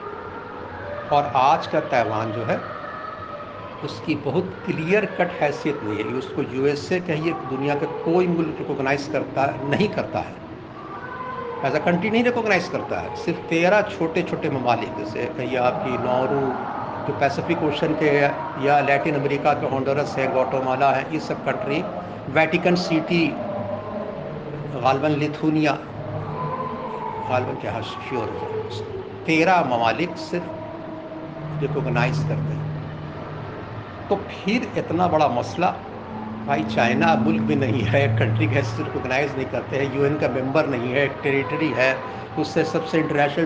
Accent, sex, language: native, male, Hindi